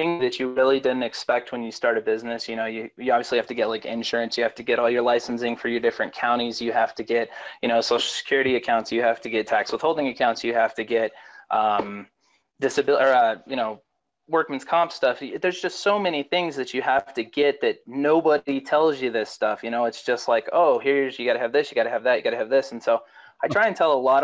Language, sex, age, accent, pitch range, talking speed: English, male, 20-39, American, 120-145 Hz, 260 wpm